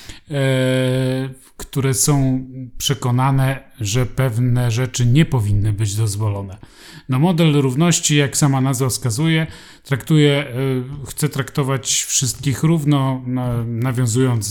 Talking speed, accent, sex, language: 90 wpm, native, male, Polish